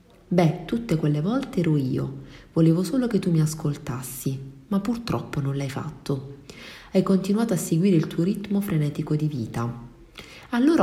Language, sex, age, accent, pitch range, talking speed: Italian, female, 40-59, native, 145-185 Hz, 155 wpm